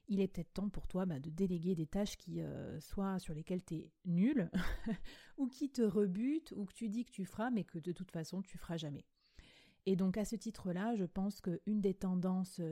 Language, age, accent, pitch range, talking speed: French, 30-49, French, 175-210 Hz, 230 wpm